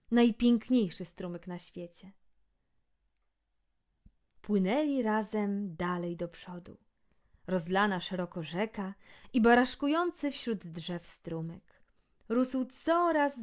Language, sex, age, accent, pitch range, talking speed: Polish, female, 20-39, native, 180-250 Hz, 85 wpm